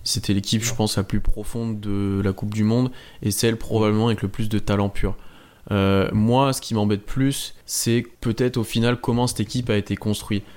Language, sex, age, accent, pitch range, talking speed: French, male, 20-39, French, 105-120 Hz, 210 wpm